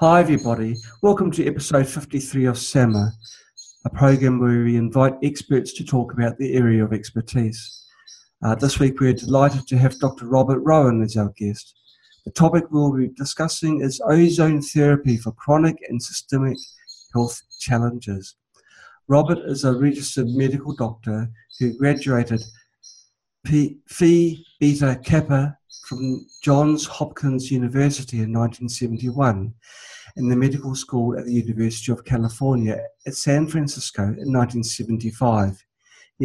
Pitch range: 120-145 Hz